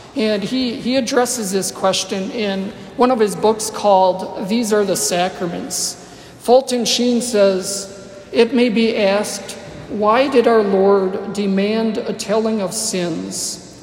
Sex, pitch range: male, 195-230 Hz